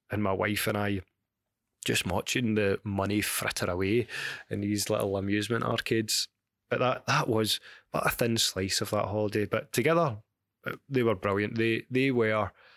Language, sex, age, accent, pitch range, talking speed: English, male, 20-39, British, 95-110 Hz, 165 wpm